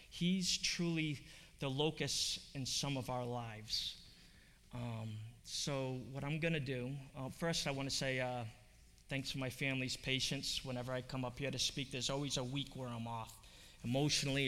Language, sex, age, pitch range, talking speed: English, male, 20-39, 125-165 Hz, 170 wpm